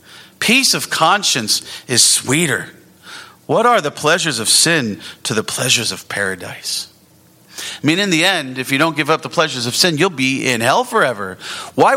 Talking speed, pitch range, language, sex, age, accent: 180 wpm, 105-155 Hz, English, male, 40-59, American